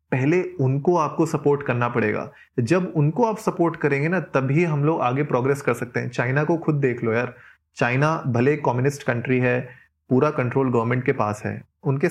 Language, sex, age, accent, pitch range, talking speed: Hindi, male, 30-49, native, 125-160 Hz, 190 wpm